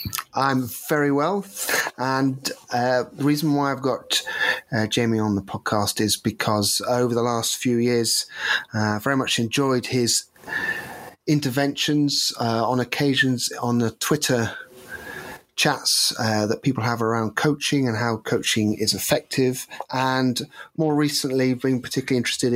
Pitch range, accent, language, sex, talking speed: 115-140 Hz, British, English, male, 140 wpm